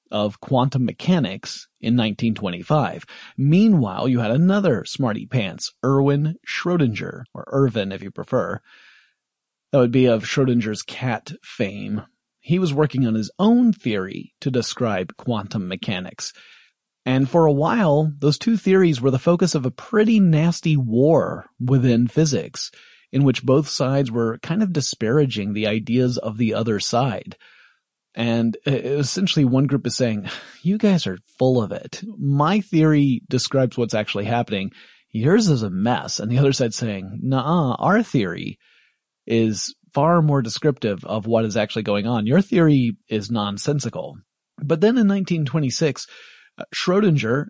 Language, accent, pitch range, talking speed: English, American, 115-160 Hz, 145 wpm